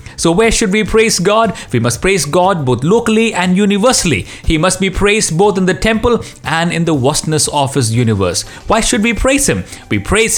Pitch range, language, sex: 130-200 Hz, English, male